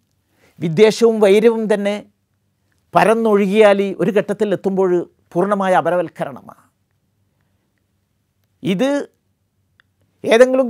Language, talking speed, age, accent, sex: Malayalam, 60 wpm, 50-69, native, male